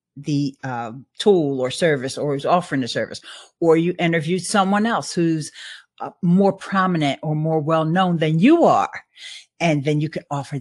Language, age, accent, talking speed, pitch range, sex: English, 50-69, American, 170 wpm, 140-190 Hz, female